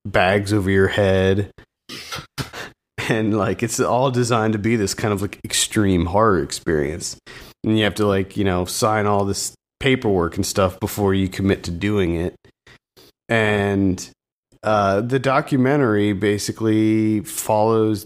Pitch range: 95-120 Hz